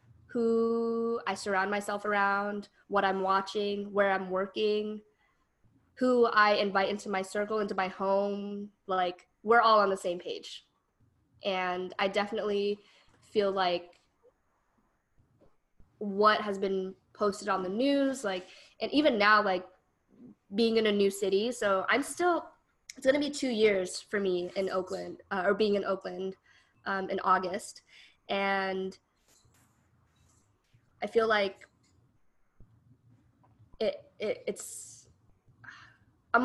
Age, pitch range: 20-39, 195-235 Hz